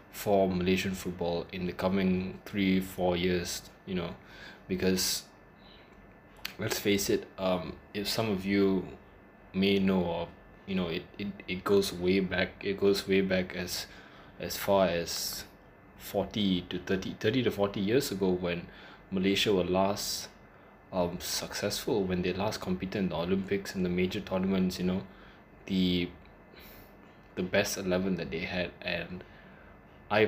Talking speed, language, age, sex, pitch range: 150 wpm, English, 20-39, male, 90-100 Hz